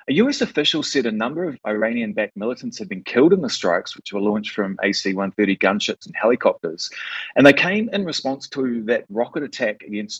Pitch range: 100-125 Hz